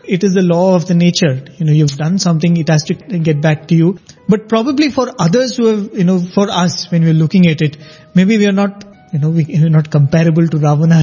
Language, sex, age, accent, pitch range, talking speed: English, male, 30-49, Indian, 165-205 Hz, 245 wpm